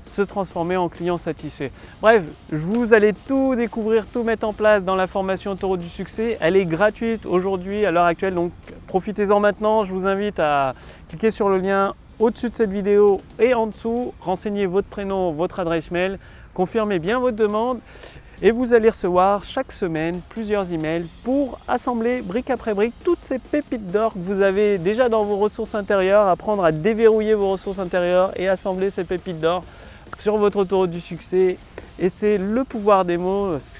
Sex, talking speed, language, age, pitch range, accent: male, 185 wpm, French, 30-49, 170-215 Hz, French